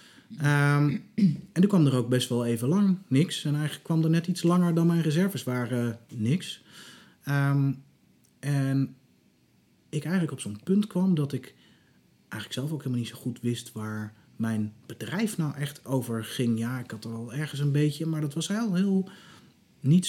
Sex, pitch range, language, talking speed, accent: male, 120-150 Hz, Dutch, 180 wpm, Dutch